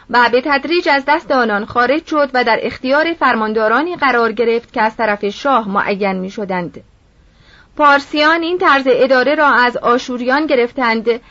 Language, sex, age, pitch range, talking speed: Persian, female, 30-49, 235-300 Hz, 155 wpm